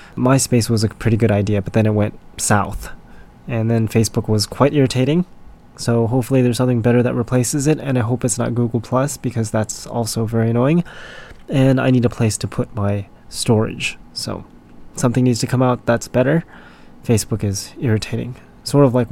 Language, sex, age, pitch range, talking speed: English, male, 20-39, 115-130 Hz, 190 wpm